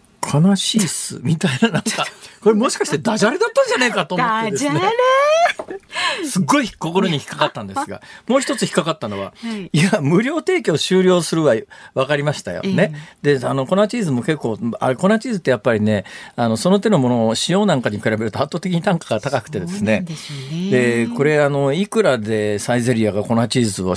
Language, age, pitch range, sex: Japanese, 40-59, 125-200 Hz, male